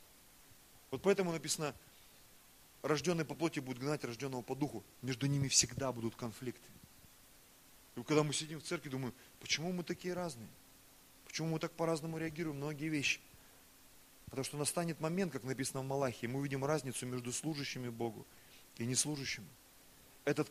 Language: Russian